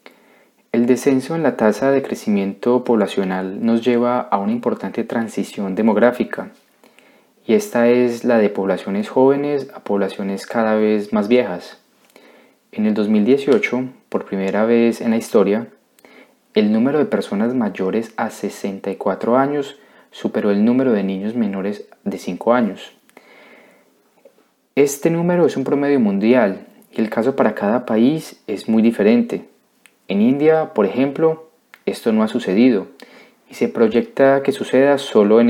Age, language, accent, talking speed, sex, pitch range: 20-39, Spanish, Colombian, 140 wpm, male, 105-140 Hz